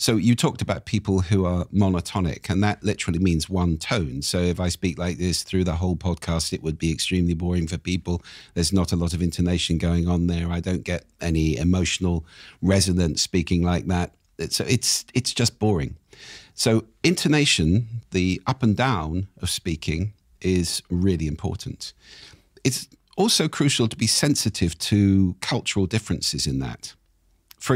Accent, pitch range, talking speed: British, 85-110 Hz, 165 wpm